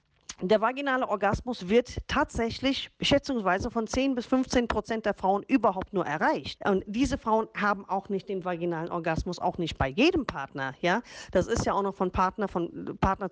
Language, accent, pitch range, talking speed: German, German, 180-240 Hz, 180 wpm